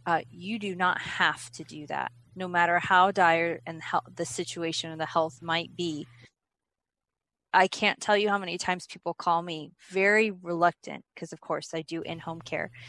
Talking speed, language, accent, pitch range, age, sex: 185 wpm, English, American, 140-185 Hz, 20-39, female